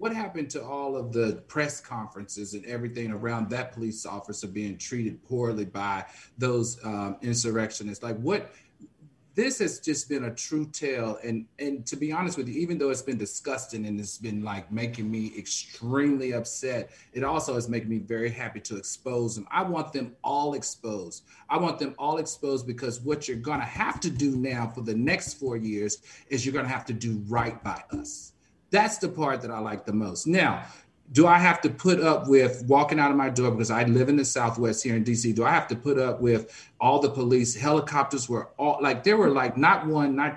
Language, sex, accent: English, male, American